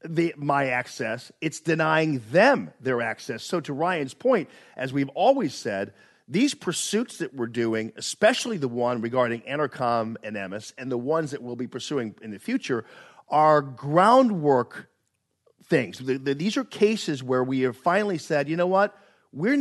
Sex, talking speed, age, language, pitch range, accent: male, 170 wpm, 50-69, English, 125-165 Hz, American